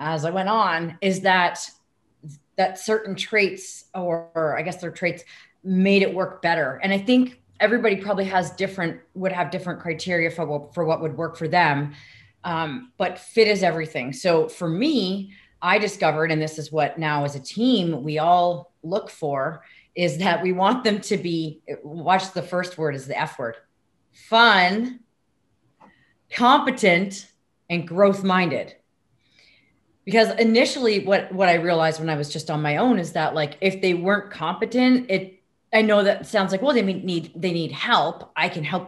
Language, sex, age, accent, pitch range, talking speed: English, female, 30-49, American, 160-195 Hz, 175 wpm